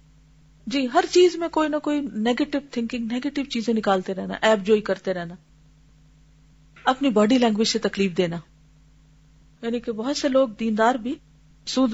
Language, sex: Urdu, female